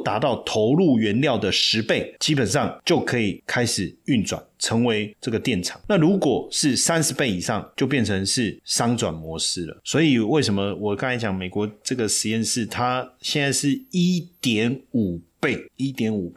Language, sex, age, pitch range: Chinese, male, 30-49, 105-135 Hz